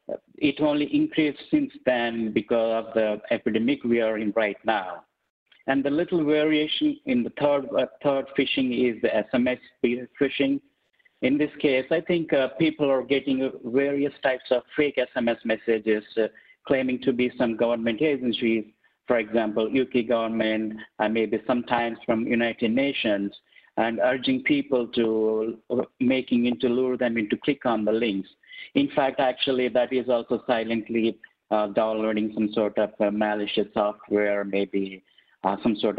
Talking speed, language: 155 wpm, English